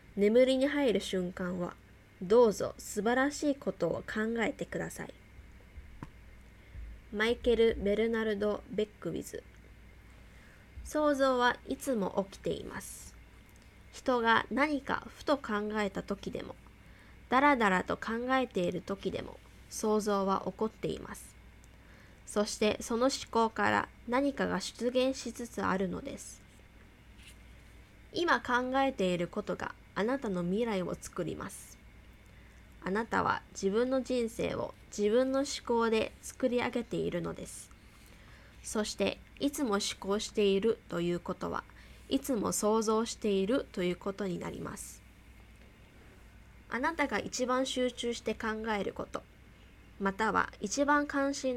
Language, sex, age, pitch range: Japanese, female, 20-39, 190-245 Hz